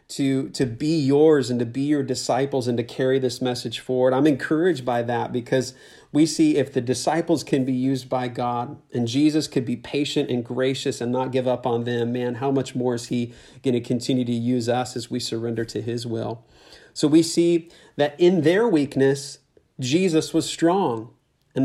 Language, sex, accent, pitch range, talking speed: English, male, American, 120-155 Hz, 200 wpm